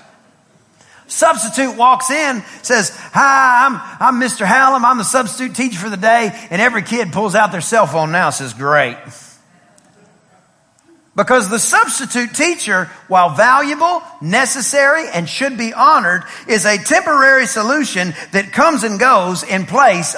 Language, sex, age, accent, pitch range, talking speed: English, male, 40-59, American, 210-270 Hz, 145 wpm